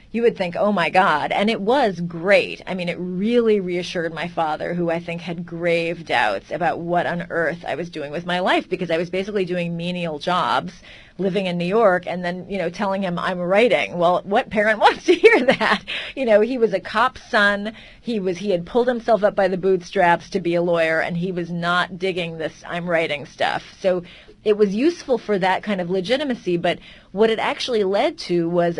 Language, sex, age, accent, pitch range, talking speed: English, female, 30-49, American, 175-220 Hz, 220 wpm